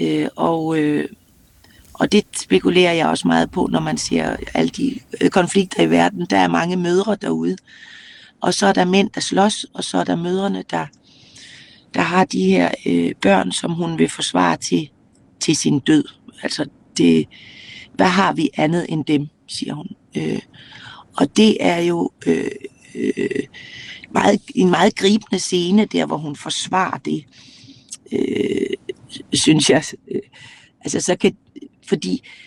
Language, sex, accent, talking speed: Danish, female, native, 140 wpm